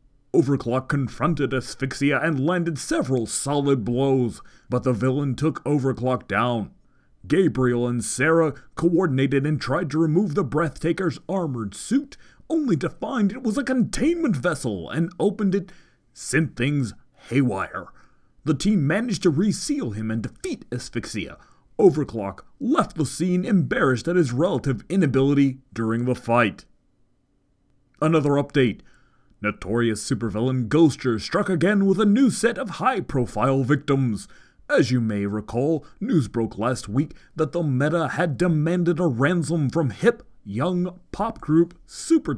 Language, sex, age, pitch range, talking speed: English, male, 30-49, 125-175 Hz, 135 wpm